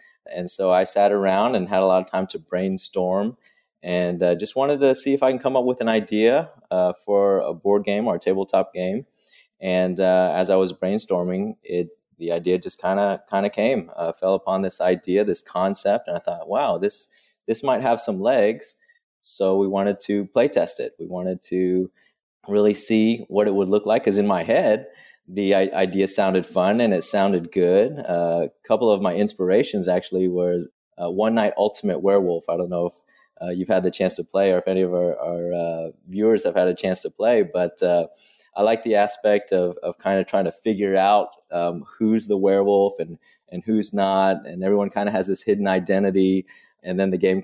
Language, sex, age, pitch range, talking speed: English, male, 30-49, 90-105 Hz, 215 wpm